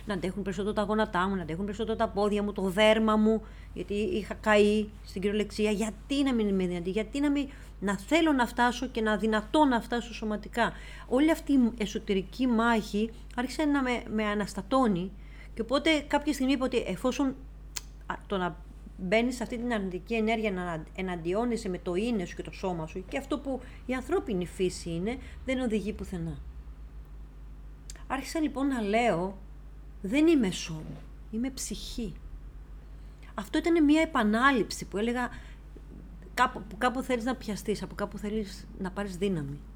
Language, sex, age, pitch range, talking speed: Greek, female, 40-59, 185-240 Hz, 165 wpm